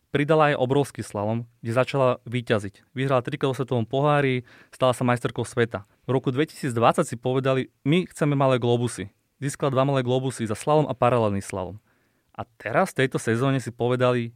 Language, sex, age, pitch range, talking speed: Slovak, male, 30-49, 120-150 Hz, 165 wpm